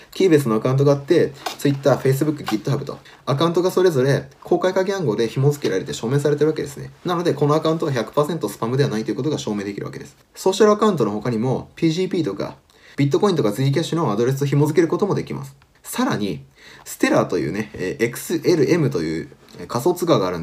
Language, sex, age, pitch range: Japanese, male, 20-39, 130-175 Hz